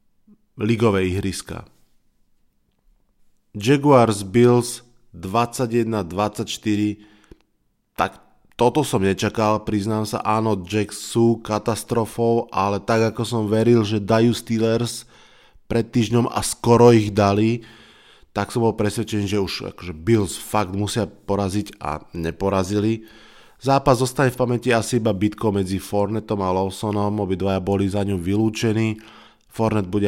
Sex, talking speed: male, 120 wpm